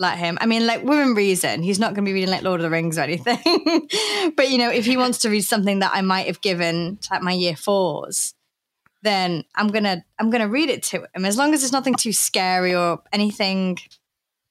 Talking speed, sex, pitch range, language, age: 230 wpm, female, 185-240 Hz, English, 20-39